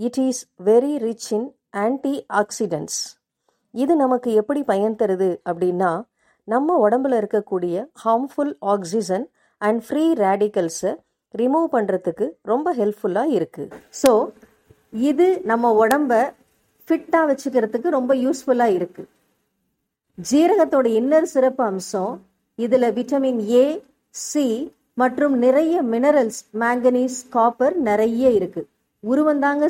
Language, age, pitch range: Tamil, 50-69, 220-280 Hz